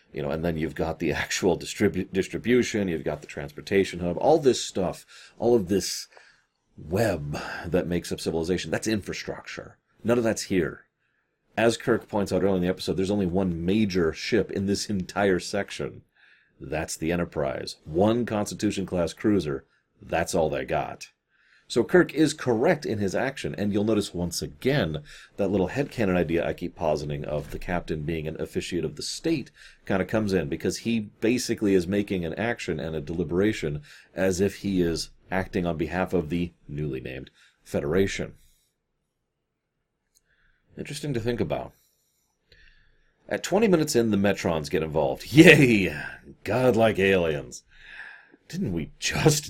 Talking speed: 160 wpm